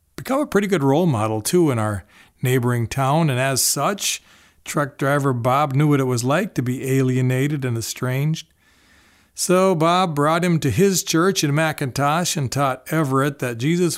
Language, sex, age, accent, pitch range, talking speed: English, male, 40-59, American, 115-160 Hz, 175 wpm